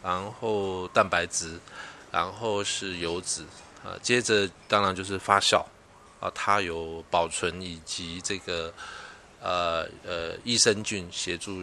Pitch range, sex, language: 90-110 Hz, male, Chinese